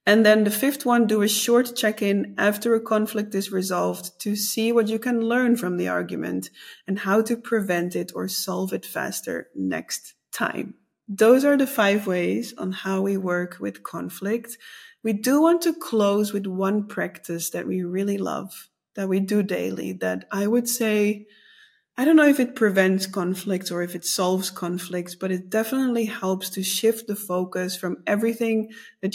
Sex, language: female, English